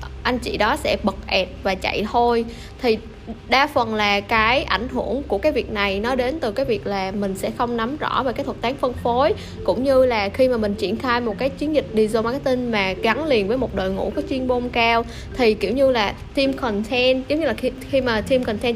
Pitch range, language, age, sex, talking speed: 205-265 Hz, Vietnamese, 20-39, female, 240 wpm